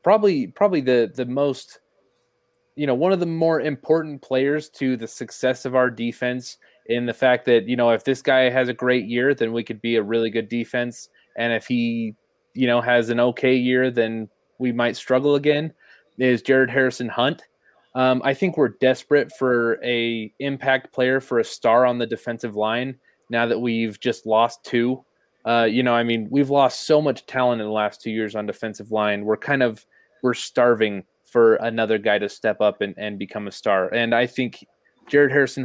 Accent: American